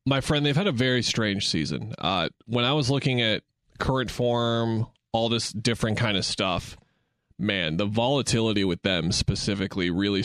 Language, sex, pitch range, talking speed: English, male, 105-130 Hz, 170 wpm